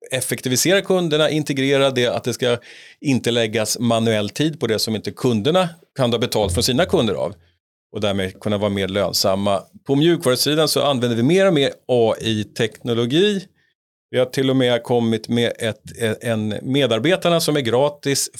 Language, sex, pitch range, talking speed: English, male, 110-140 Hz, 165 wpm